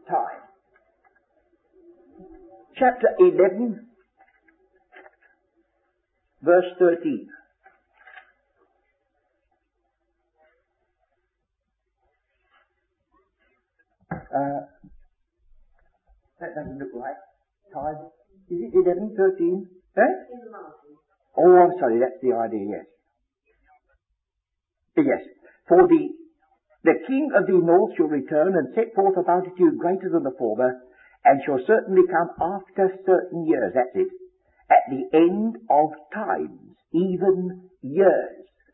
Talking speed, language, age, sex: 90 wpm, English, 60-79, male